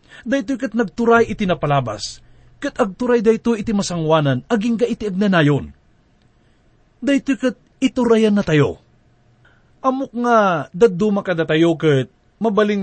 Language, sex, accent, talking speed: English, male, Filipino, 125 wpm